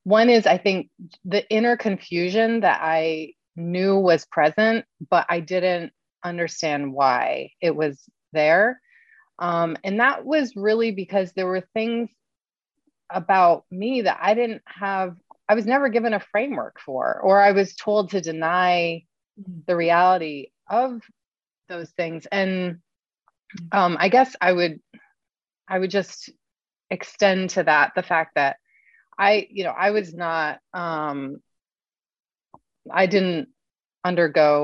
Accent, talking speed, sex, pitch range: American, 135 wpm, female, 160-210 Hz